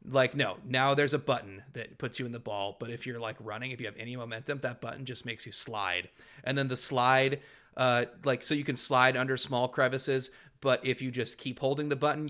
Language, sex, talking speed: English, male, 240 wpm